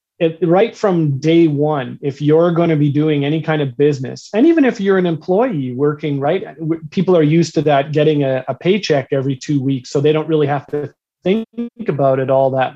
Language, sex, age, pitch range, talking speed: English, male, 30-49, 140-170 Hz, 210 wpm